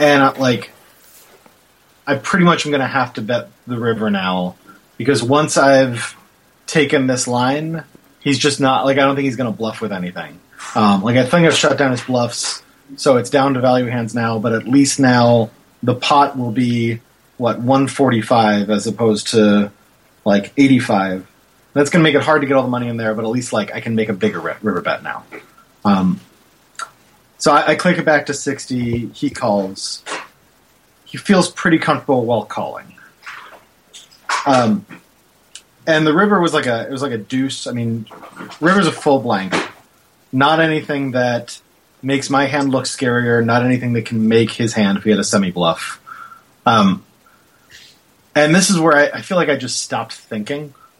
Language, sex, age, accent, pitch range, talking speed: English, male, 30-49, American, 115-145 Hz, 185 wpm